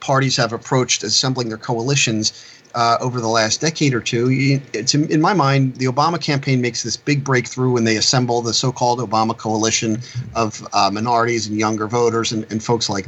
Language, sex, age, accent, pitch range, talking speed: English, male, 40-59, American, 115-135 Hz, 185 wpm